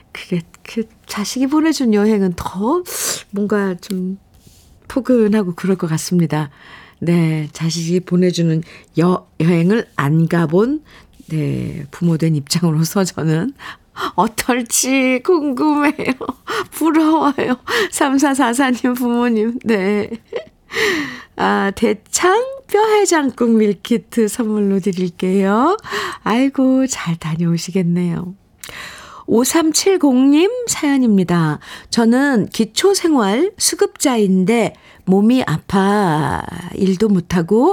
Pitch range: 175-255 Hz